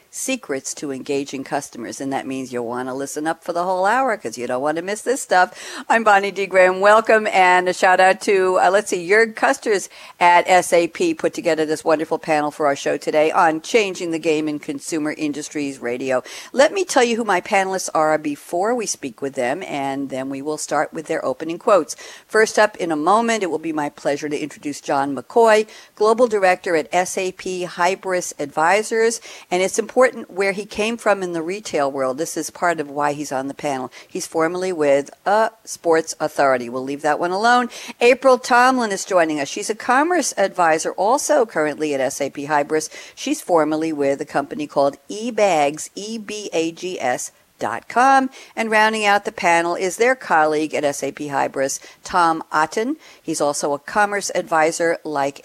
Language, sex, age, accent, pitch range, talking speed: English, female, 60-79, American, 145-210 Hz, 185 wpm